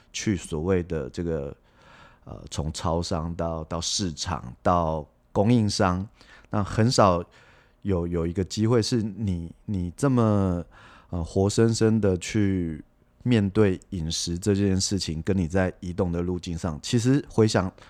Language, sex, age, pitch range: Chinese, male, 30-49, 85-110 Hz